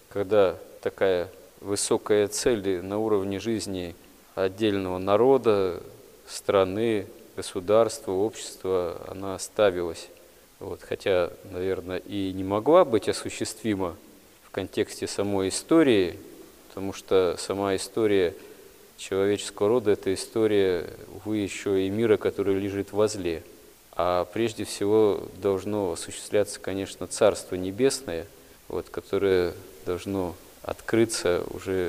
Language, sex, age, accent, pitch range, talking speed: Russian, male, 20-39, native, 95-135 Hz, 100 wpm